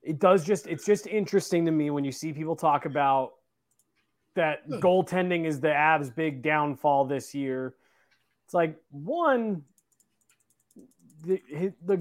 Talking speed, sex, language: 140 wpm, male, English